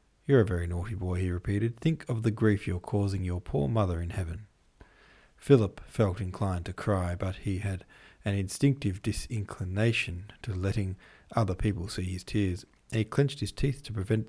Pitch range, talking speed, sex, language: 90-110 Hz, 175 wpm, male, English